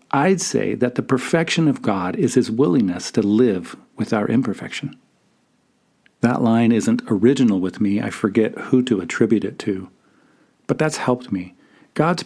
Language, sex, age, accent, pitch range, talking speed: English, male, 50-69, American, 105-135 Hz, 160 wpm